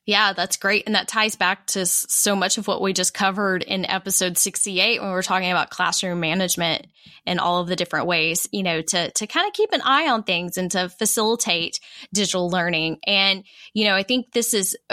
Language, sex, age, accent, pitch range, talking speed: English, female, 10-29, American, 185-235 Hz, 215 wpm